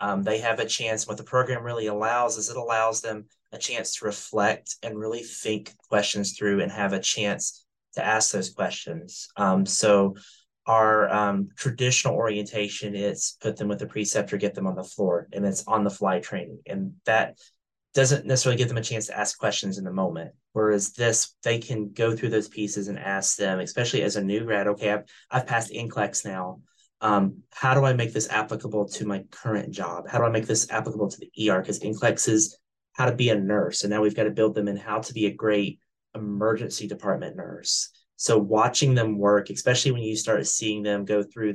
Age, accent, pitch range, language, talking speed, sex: 30-49, American, 100-110 Hz, English, 210 wpm, male